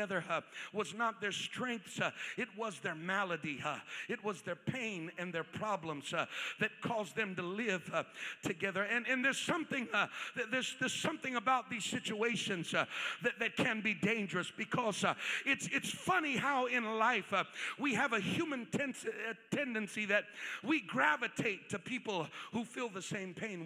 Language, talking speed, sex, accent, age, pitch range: English, 175 wpm, male, American, 50-69, 210-255 Hz